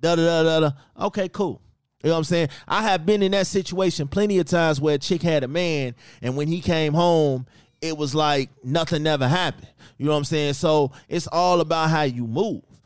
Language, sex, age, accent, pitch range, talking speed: English, male, 20-39, American, 145-200 Hz, 235 wpm